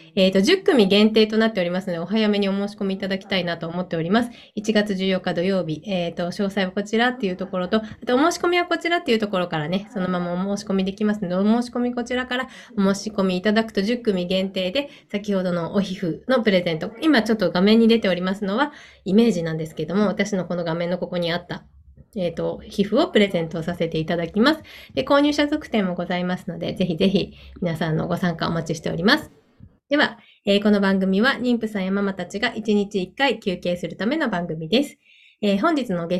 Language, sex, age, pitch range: Japanese, female, 20-39, 180-225 Hz